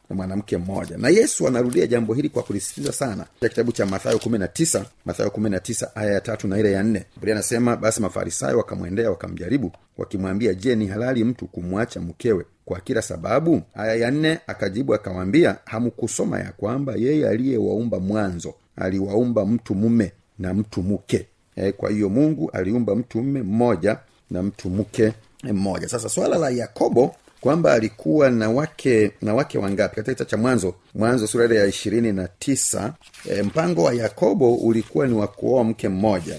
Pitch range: 100-120 Hz